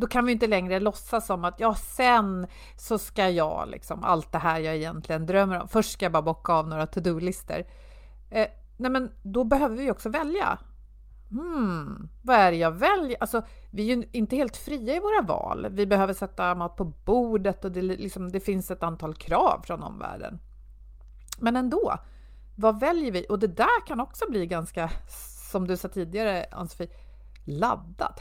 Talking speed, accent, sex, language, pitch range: 185 wpm, native, female, Swedish, 170-240 Hz